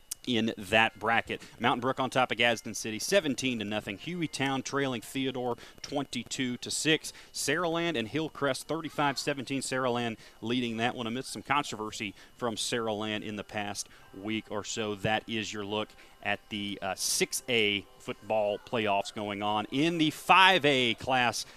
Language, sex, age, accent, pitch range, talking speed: English, male, 40-59, American, 115-160 Hz, 155 wpm